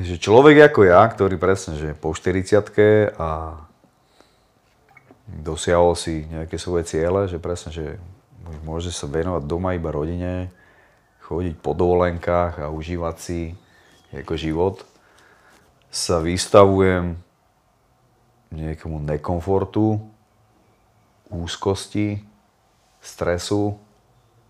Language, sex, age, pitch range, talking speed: Czech, male, 30-49, 80-100 Hz, 95 wpm